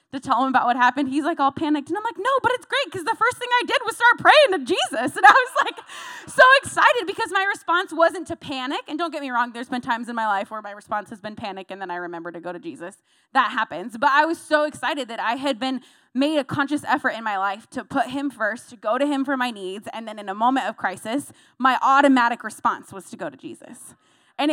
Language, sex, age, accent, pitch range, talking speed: English, female, 20-39, American, 220-325 Hz, 265 wpm